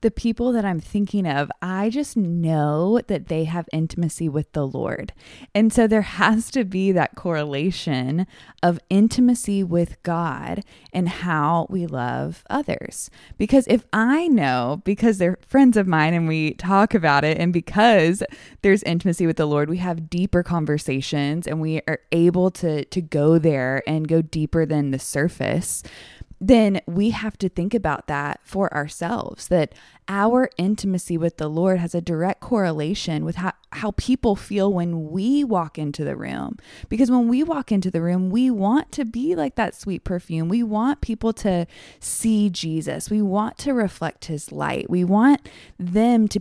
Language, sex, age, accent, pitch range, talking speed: English, female, 20-39, American, 160-215 Hz, 170 wpm